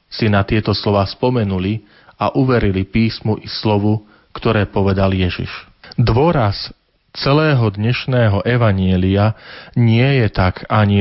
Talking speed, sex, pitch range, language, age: 115 wpm, male, 100-125 Hz, Slovak, 40-59